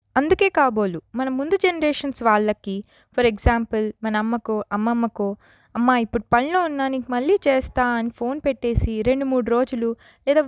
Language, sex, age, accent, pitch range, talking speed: Telugu, female, 20-39, native, 225-300 Hz, 135 wpm